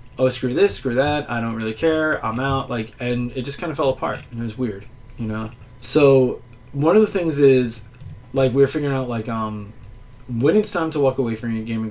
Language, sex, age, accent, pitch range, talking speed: English, male, 20-39, American, 120-150 Hz, 235 wpm